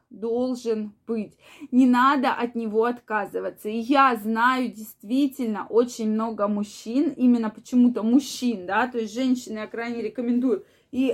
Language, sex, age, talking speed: Russian, female, 20-39, 135 wpm